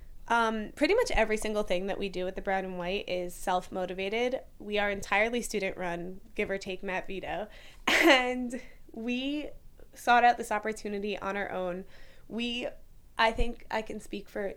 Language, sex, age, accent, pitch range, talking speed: English, female, 20-39, American, 190-240 Hz, 170 wpm